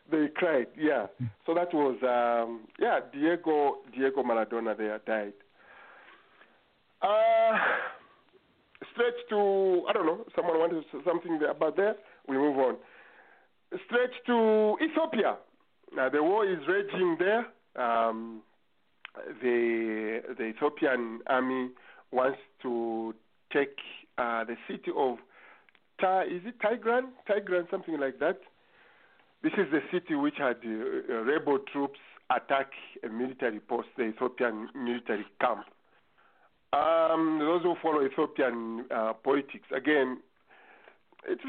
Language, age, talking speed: English, 50-69, 120 wpm